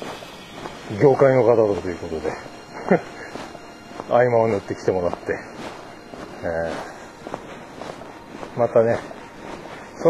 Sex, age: male, 40-59